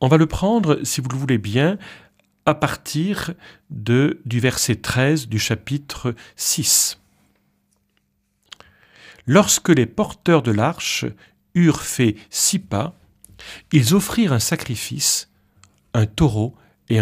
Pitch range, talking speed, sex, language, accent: 100-150 Hz, 120 wpm, male, French, French